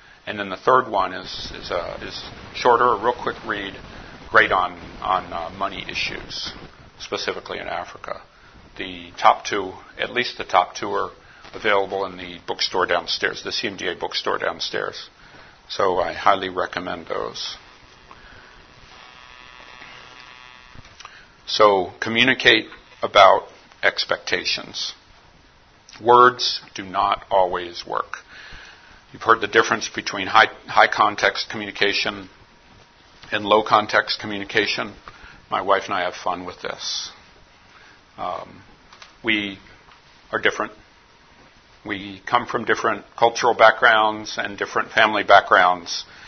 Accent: American